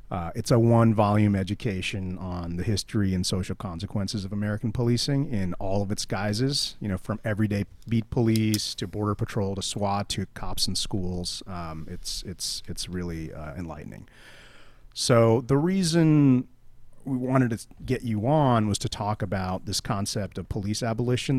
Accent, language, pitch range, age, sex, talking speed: American, English, 95-125 Hz, 30-49, male, 165 wpm